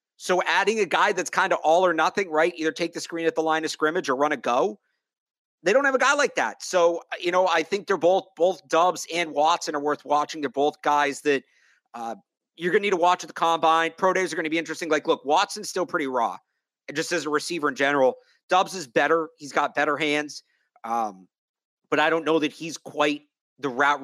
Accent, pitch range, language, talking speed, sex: American, 140-170 Hz, English, 240 wpm, male